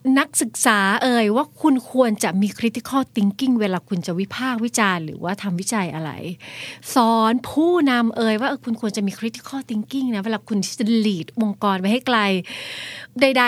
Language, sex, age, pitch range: Thai, female, 30-49, 190-235 Hz